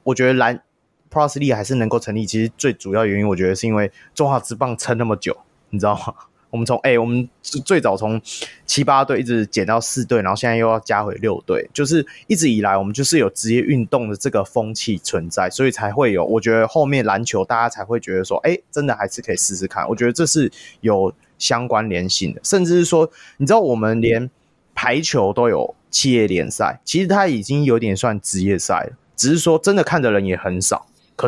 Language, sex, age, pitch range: Chinese, male, 20-39, 105-135 Hz